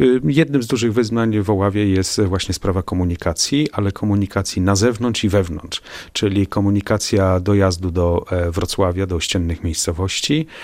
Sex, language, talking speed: male, Polish, 135 wpm